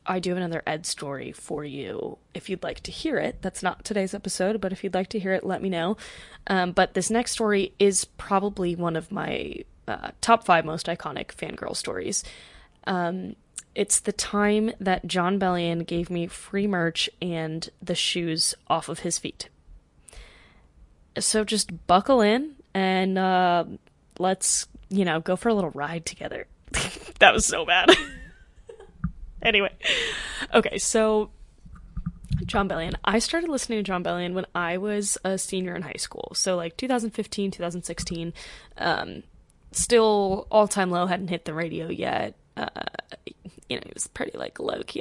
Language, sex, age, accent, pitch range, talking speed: English, female, 20-39, American, 175-205 Hz, 160 wpm